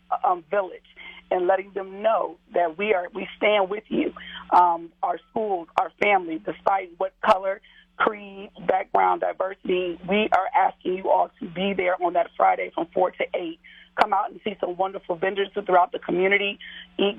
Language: English